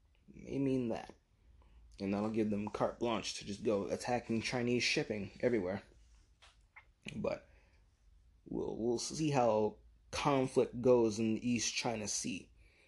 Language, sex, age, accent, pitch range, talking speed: English, male, 20-39, American, 105-140 Hz, 130 wpm